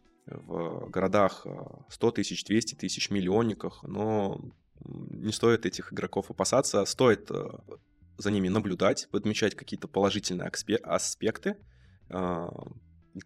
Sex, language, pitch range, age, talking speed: male, Russian, 95-115 Hz, 20-39, 100 wpm